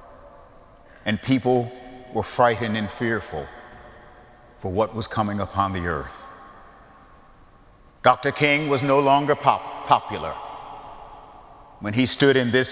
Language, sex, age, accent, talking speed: English, male, 50-69, American, 115 wpm